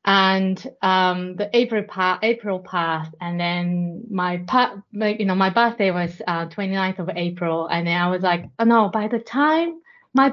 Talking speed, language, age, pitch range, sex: 180 wpm, English, 30-49, 175-230 Hz, female